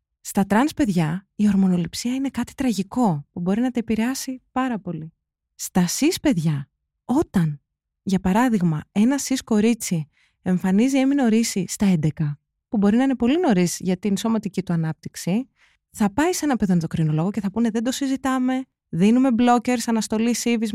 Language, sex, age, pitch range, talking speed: Greek, female, 20-39, 175-245 Hz, 160 wpm